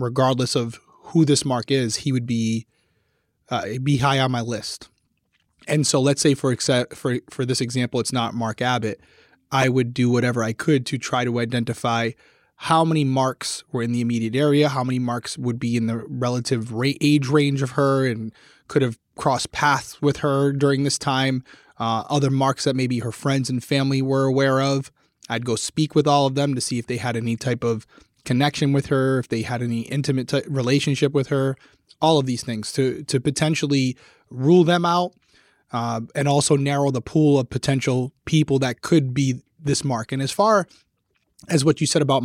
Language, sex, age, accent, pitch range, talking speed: English, male, 20-39, American, 125-145 Hz, 200 wpm